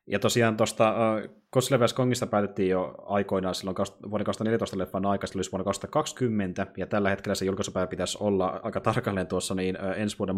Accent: native